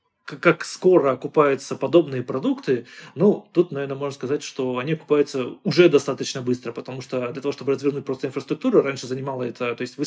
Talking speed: 180 wpm